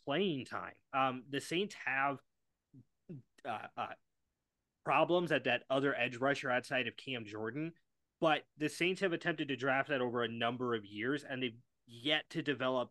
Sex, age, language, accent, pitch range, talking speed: male, 20-39, English, American, 125-155 Hz, 165 wpm